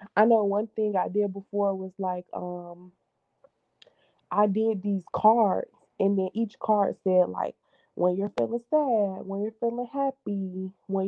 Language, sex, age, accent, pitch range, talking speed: English, female, 20-39, American, 195-230 Hz, 155 wpm